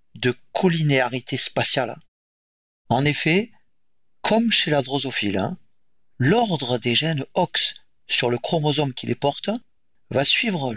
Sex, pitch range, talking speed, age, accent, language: male, 125-180 Hz, 115 wpm, 40-59, French, French